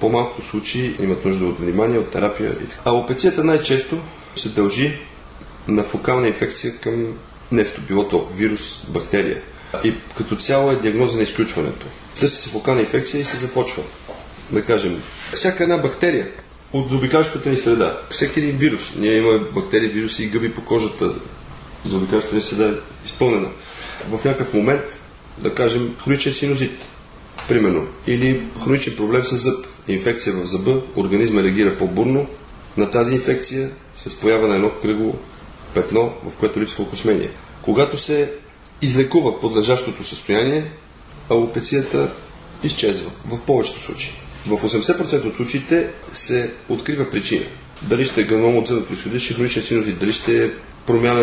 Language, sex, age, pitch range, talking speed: Bulgarian, male, 30-49, 110-135 Hz, 145 wpm